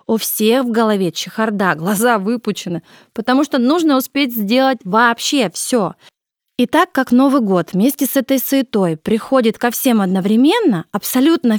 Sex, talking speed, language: female, 145 wpm, Russian